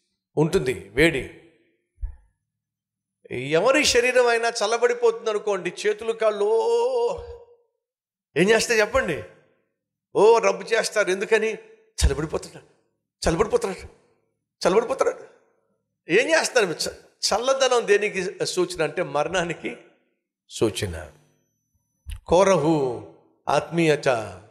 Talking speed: 70 wpm